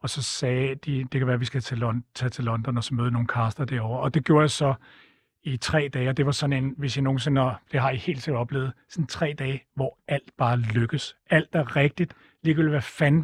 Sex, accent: male, native